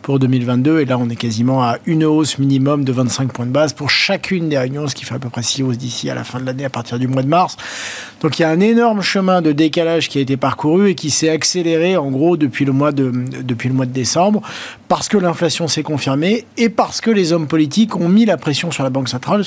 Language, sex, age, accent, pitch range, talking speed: French, male, 40-59, French, 145-205 Hz, 270 wpm